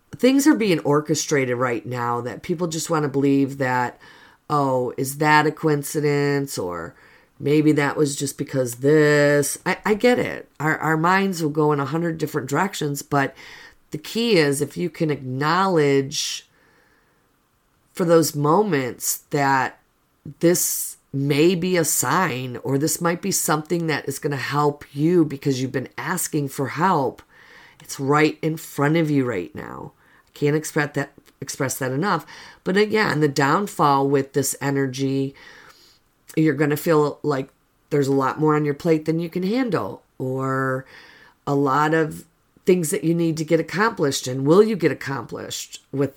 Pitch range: 140-165 Hz